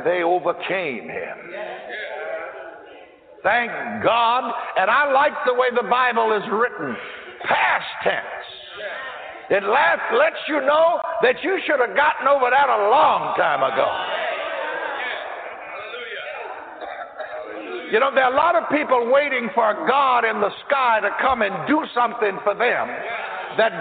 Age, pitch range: 60-79, 205-295 Hz